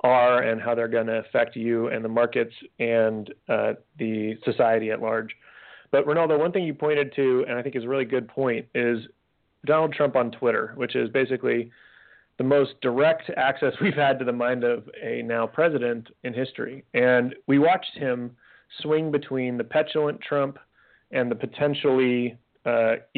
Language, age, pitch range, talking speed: English, 30-49, 120-140 Hz, 175 wpm